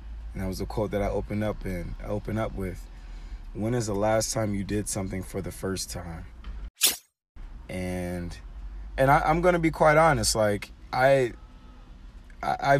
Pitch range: 90-110 Hz